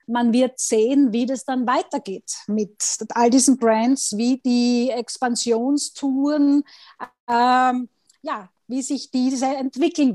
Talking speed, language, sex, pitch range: 120 wpm, German, female, 230-270 Hz